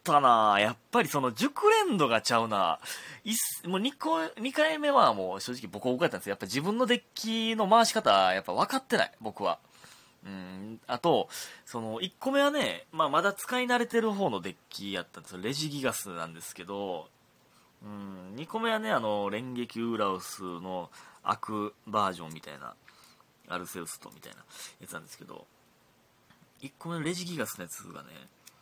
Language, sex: Japanese, male